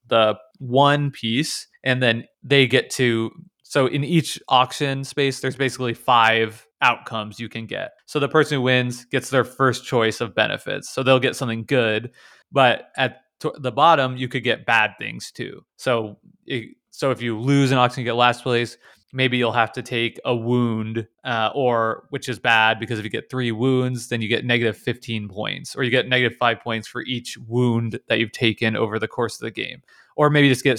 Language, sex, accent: English, male, American